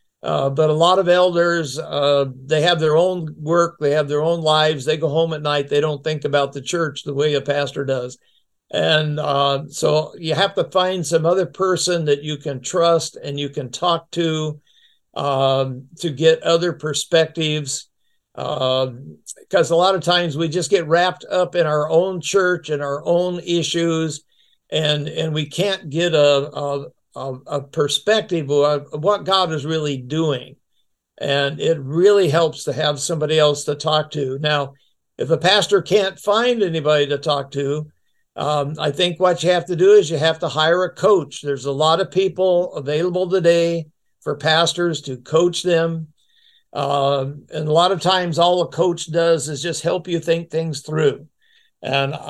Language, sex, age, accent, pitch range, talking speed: English, male, 60-79, American, 145-175 Hz, 180 wpm